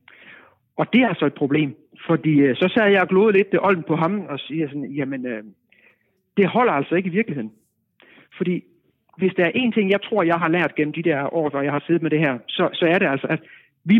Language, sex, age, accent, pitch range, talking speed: Danish, male, 60-79, native, 150-200 Hz, 240 wpm